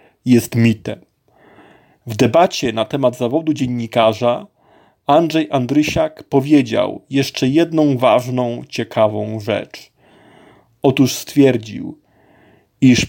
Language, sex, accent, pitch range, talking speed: Polish, male, native, 125-150 Hz, 85 wpm